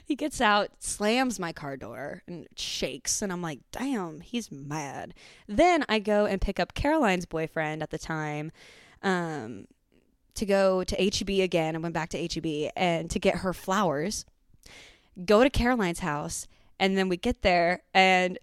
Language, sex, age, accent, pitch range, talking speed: English, female, 20-39, American, 160-215 Hz, 170 wpm